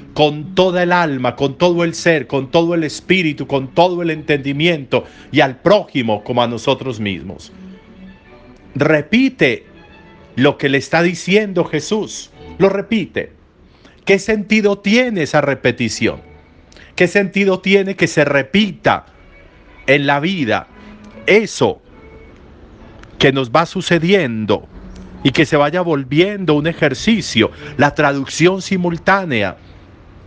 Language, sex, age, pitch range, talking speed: Spanish, male, 50-69, 130-185 Hz, 120 wpm